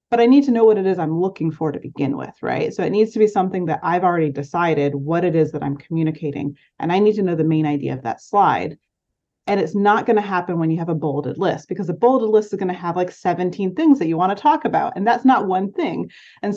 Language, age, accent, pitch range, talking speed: English, 30-49, American, 160-215 Hz, 280 wpm